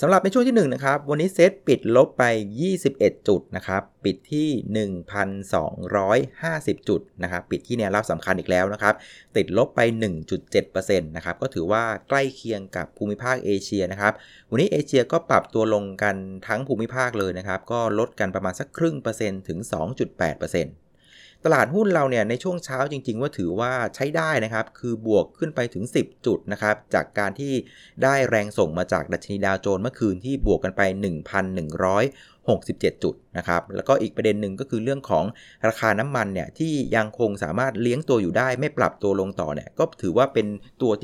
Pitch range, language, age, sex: 100-135 Hz, Thai, 30-49, male